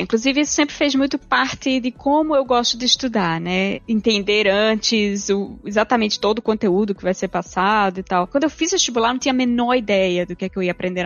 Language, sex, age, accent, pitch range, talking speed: Portuguese, female, 20-39, Brazilian, 190-240 Hz, 235 wpm